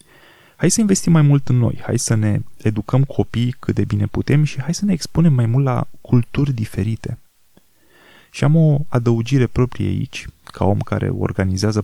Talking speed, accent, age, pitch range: 180 wpm, native, 20-39, 100-130 Hz